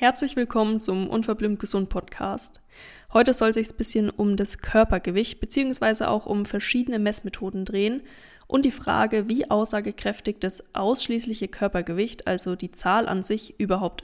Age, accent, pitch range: 20-39, German, 195-225 Hz